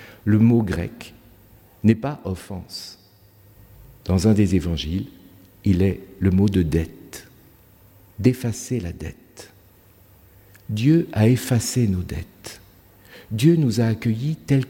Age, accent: 60-79, French